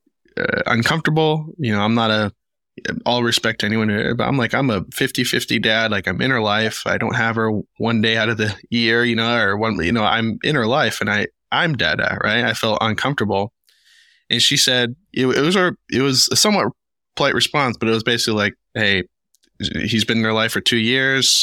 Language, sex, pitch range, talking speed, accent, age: English, male, 110-120 Hz, 220 wpm, American, 20-39